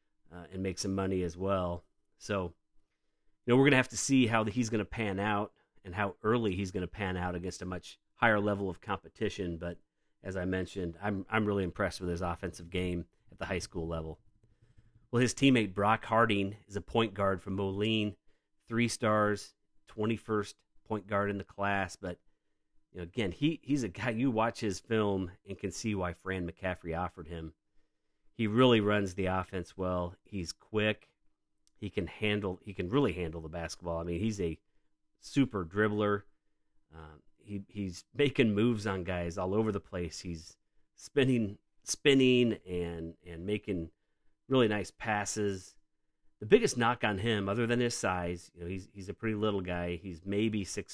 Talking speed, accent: 180 wpm, American